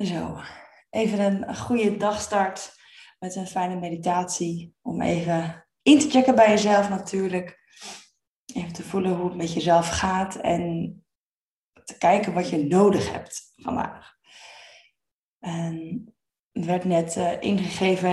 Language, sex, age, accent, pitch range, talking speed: Dutch, female, 20-39, Dutch, 170-200 Hz, 120 wpm